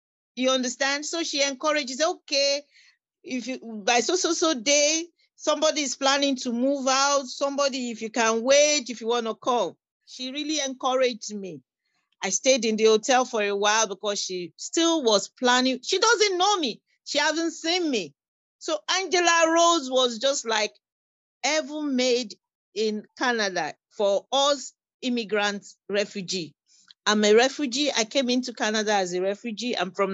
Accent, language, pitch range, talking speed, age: Nigerian, English, 205-275 Hz, 155 wpm, 40-59